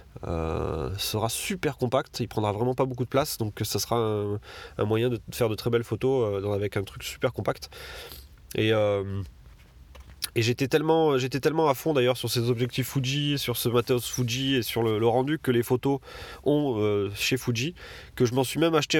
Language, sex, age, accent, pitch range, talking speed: French, male, 20-39, French, 110-135 Hz, 210 wpm